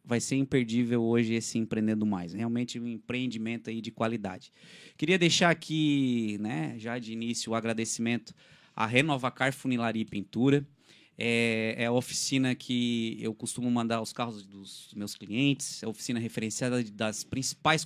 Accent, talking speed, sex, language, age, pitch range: Brazilian, 160 wpm, male, Portuguese, 20-39, 120-135 Hz